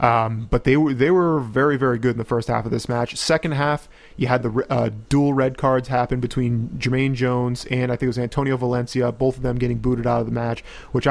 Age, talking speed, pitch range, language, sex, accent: 30-49, 250 wpm, 120-135 Hz, English, male, American